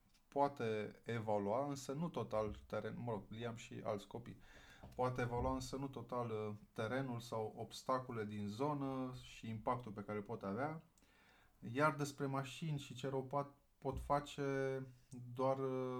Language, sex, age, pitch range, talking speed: Romanian, male, 20-39, 110-130 Hz, 135 wpm